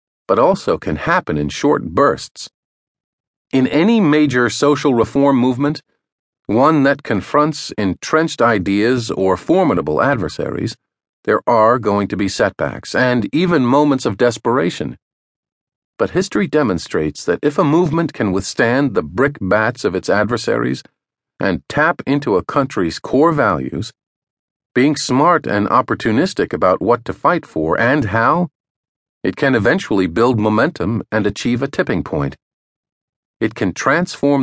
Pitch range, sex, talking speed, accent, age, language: 100-145 Hz, male, 135 wpm, American, 50-69, English